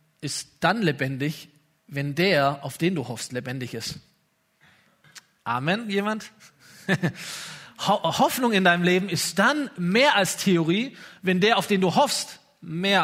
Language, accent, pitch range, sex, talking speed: German, German, 155-225 Hz, male, 135 wpm